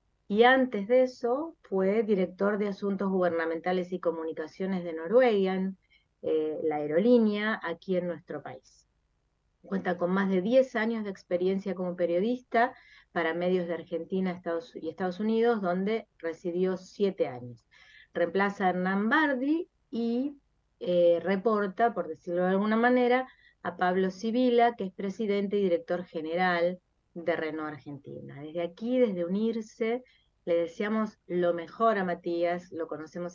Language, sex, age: Italian, female, 30-49